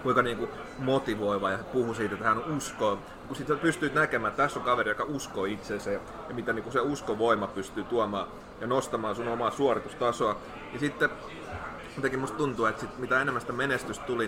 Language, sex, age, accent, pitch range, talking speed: Finnish, male, 30-49, native, 105-140 Hz, 180 wpm